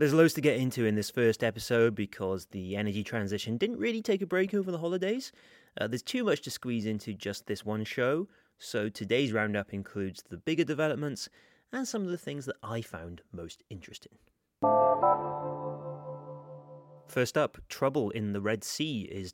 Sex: male